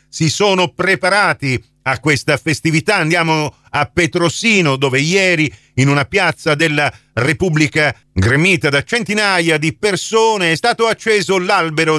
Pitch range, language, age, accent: 120-160 Hz, Italian, 40-59, native